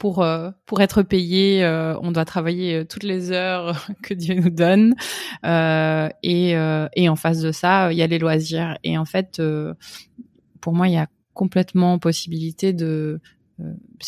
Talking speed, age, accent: 175 wpm, 20-39, French